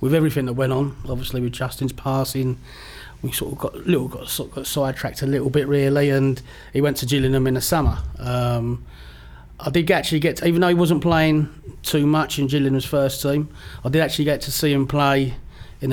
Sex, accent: male, British